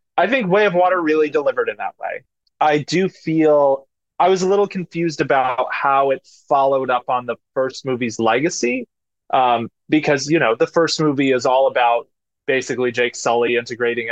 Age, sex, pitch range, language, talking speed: 20-39, male, 130-170 Hz, English, 180 wpm